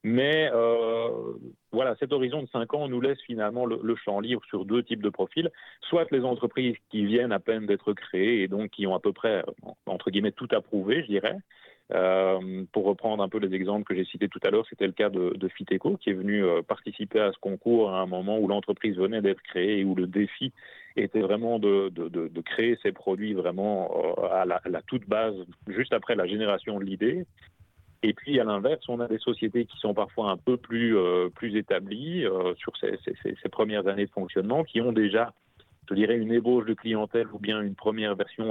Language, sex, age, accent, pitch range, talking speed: French, male, 30-49, French, 100-120 Hz, 220 wpm